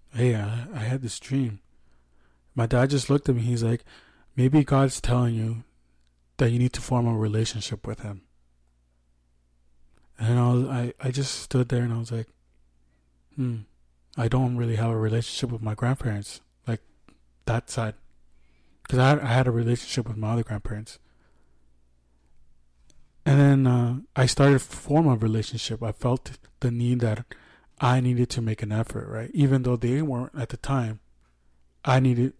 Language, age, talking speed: English, 20-39, 170 wpm